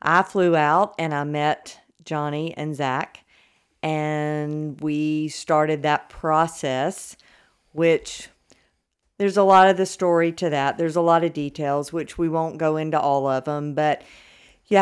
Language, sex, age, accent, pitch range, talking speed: English, female, 50-69, American, 145-160 Hz, 155 wpm